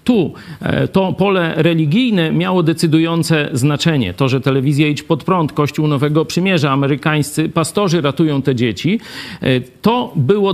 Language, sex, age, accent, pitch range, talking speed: Polish, male, 50-69, native, 140-185 Hz, 130 wpm